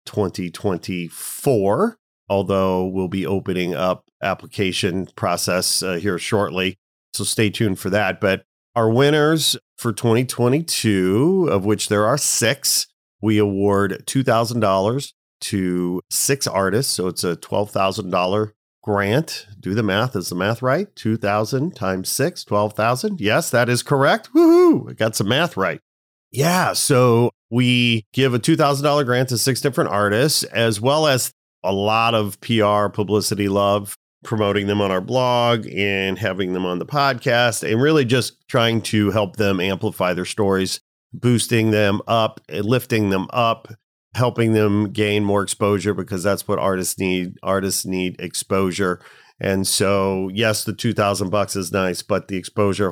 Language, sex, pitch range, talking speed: English, male, 95-120 Hz, 145 wpm